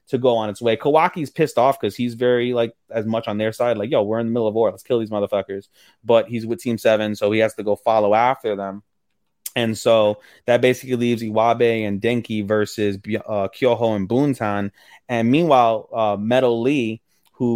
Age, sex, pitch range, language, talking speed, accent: 20-39, male, 105-130 Hz, English, 210 wpm, American